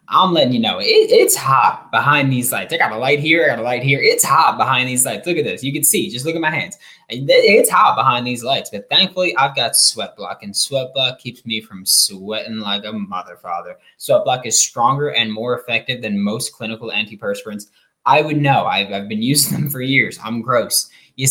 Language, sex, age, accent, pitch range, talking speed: English, male, 10-29, American, 120-170 Hz, 230 wpm